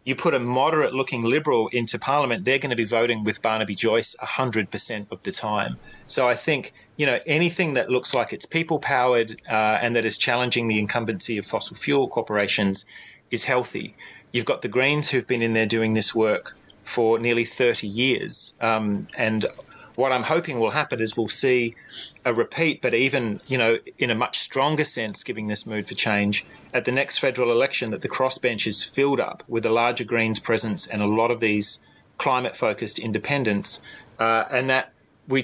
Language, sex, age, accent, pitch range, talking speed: English, male, 30-49, Australian, 110-130 Hz, 190 wpm